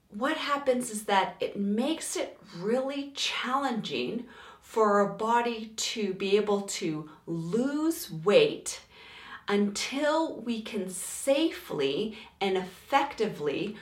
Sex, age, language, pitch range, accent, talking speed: female, 40-59, English, 185-245 Hz, American, 105 wpm